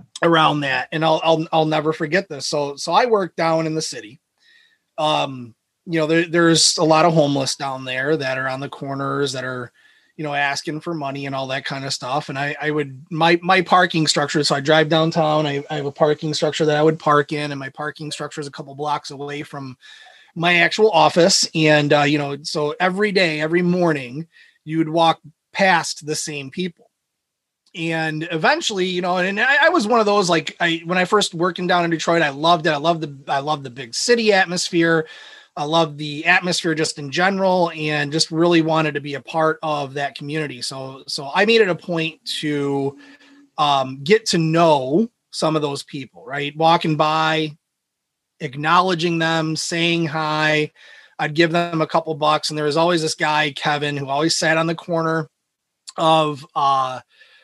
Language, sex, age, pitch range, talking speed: English, male, 30-49, 145-170 Hz, 200 wpm